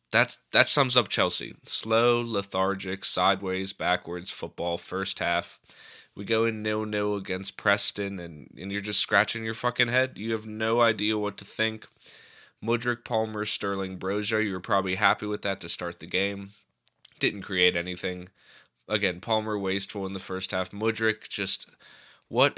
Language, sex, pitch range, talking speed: English, male, 95-110 Hz, 160 wpm